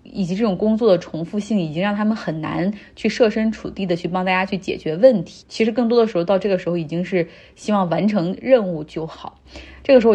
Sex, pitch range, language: female, 170-215 Hz, Chinese